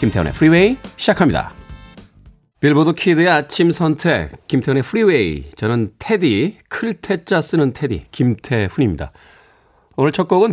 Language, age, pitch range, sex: Korean, 40-59, 110-165 Hz, male